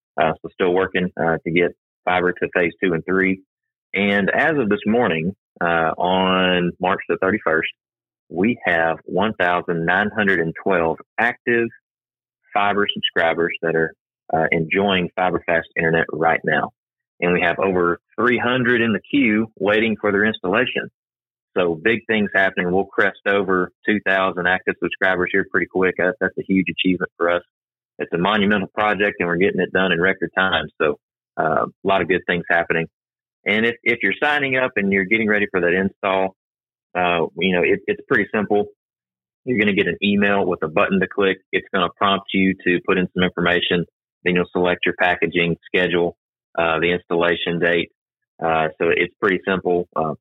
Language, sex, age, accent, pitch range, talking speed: English, male, 30-49, American, 85-100 Hz, 175 wpm